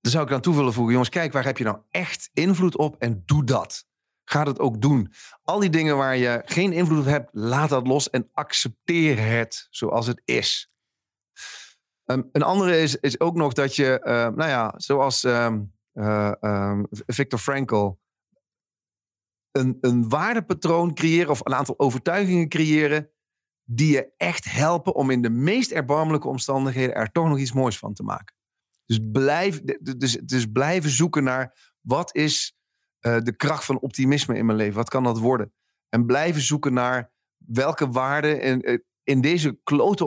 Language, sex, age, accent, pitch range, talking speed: Dutch, male, 40-59, Dutch, 120-155 Hz, 175 wpm